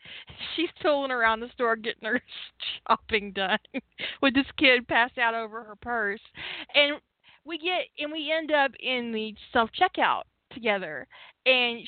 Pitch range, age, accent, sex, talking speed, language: 225-315 Hz, 20-39, American, female, 150 wpm, English